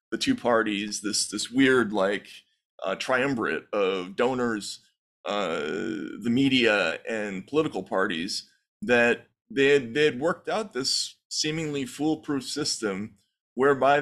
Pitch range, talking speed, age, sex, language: 110-145 Hz, 125 wpm, 20-39, male, English